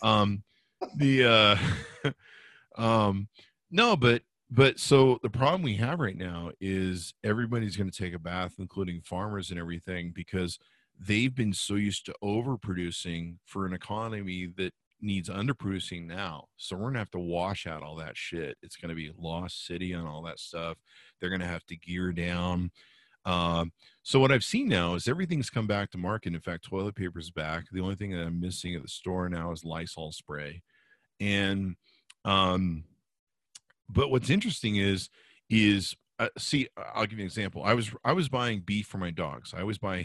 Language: English